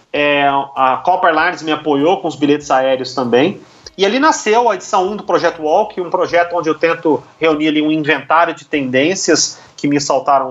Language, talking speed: Portuguese, 190 wpm